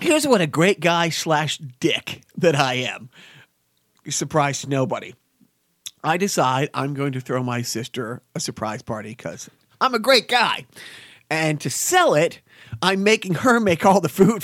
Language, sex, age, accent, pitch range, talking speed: English, male, 40-59, American, 140-195 Hz, 165 wpm